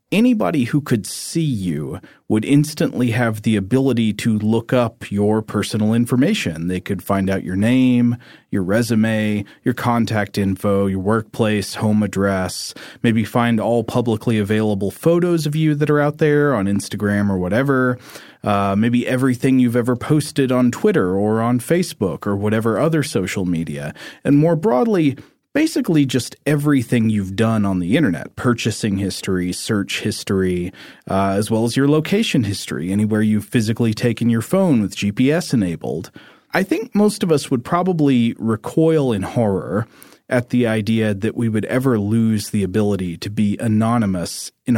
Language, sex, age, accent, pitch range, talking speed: English, male, 30-49, American, 105-135 Hz, 160 wpm